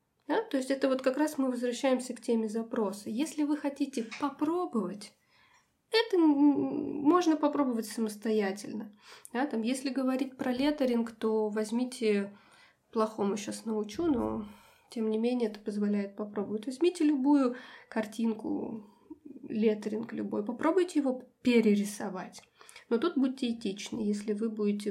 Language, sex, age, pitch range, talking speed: Russian, female, 20-39, 215-275 Hz, 130 wpm